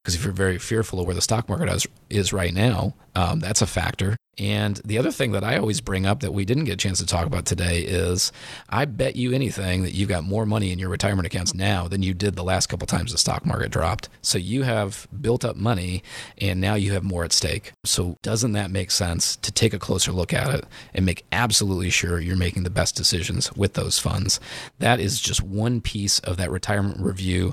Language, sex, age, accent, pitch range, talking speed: English, male, 40-59, American, 90-110 Hz, 235 wpm